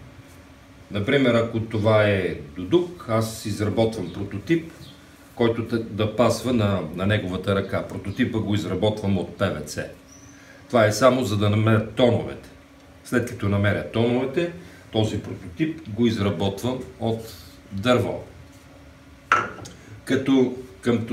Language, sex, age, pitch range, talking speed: Bulgarian, male, 40-59, 95-125 Hz, 110 wpm